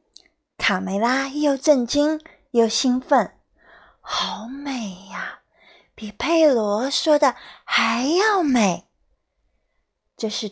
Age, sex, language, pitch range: 30-49, female, Chinese, 225-335 Hz